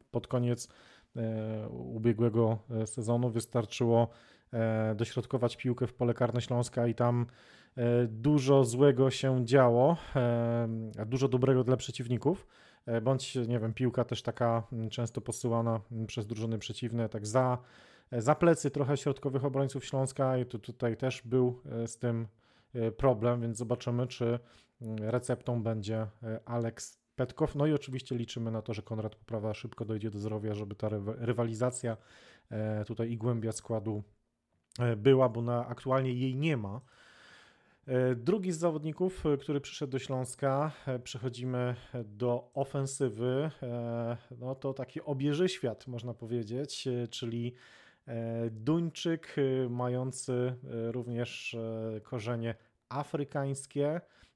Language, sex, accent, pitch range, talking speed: Polish, male, native, 115-130 Hz, 125 wpm